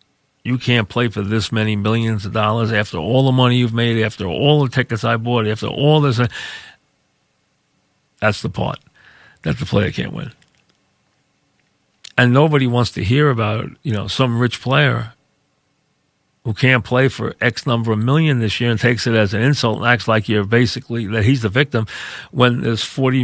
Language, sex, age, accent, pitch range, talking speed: English, male, 50-69, American, 110-125 Hz, 185 wpm